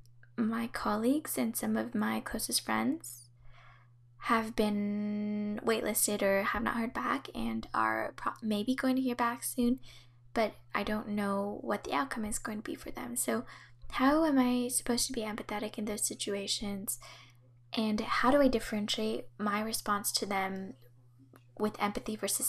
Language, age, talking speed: English, 10-29, 160 wpm